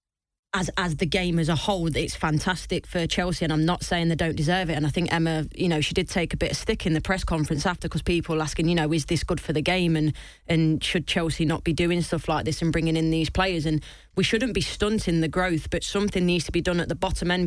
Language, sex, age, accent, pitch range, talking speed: English, female, 20-39, British, 160-180 Hz, 275 wpm